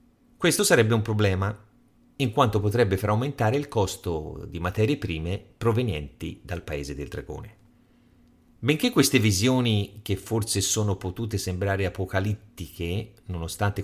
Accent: native